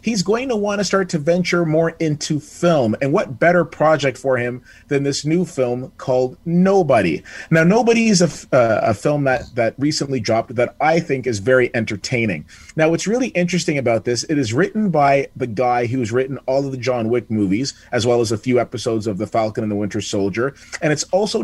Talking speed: 205 wpm